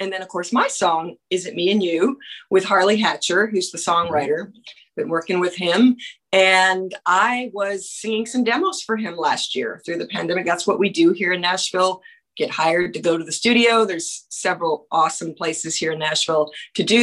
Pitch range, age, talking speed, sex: 180-240 Hz, 40-59, 200 wpm, female